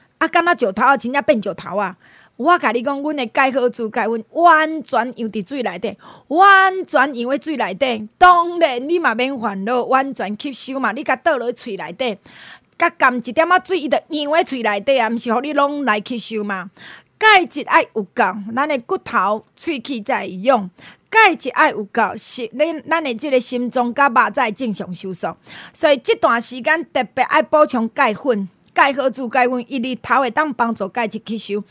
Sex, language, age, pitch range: female, Chinese, 20-39, 225-315 Hz